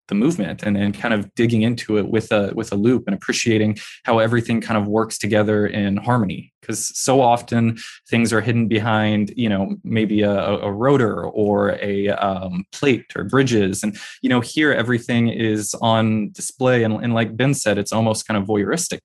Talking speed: 190 wpm